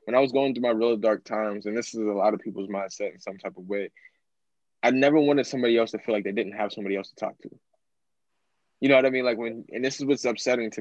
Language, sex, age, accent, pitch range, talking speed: English, male, 20-39, American, 105-125 Hz, 285 wpm